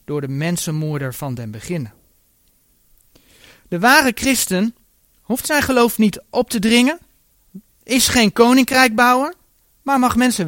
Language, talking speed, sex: Dutch, 125 wpm, male